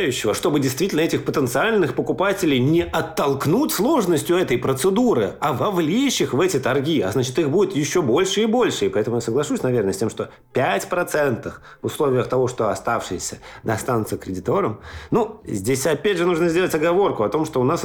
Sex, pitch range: male, 115-150 Hz